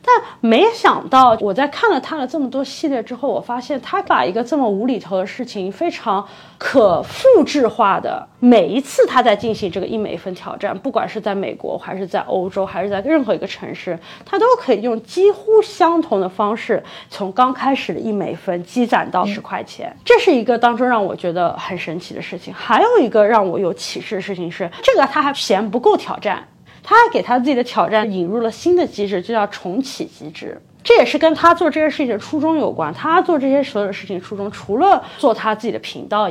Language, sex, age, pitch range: Chinese, female, 20-39, 200-290 Hz